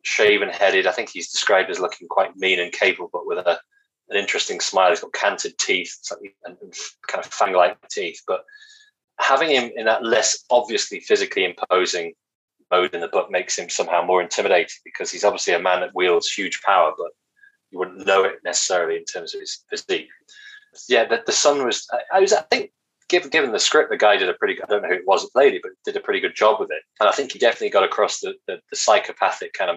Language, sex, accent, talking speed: English, male, British, 230 wpm